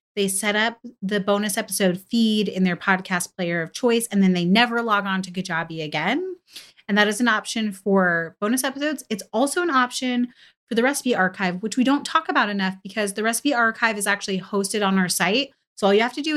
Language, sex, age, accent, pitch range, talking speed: English, female, 30-49, American, 175-220 Hz, 220 wpm